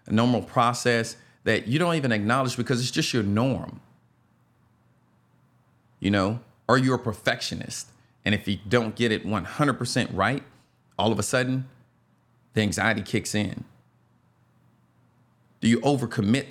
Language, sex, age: English, male, 40-59